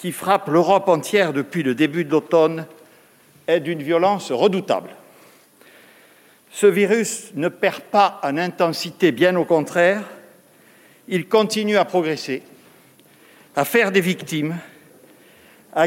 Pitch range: 170-205 Hz